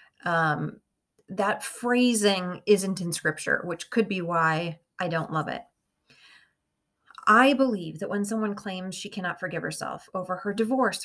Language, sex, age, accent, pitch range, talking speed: English, female, 30-49, American, 170-220 Hz, 145 wpm